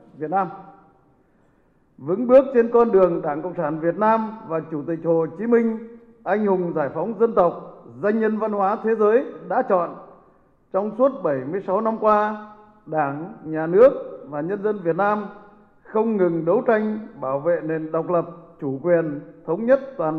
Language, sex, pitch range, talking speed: Vietnamese, male, 170-225 Hz, 180 wpm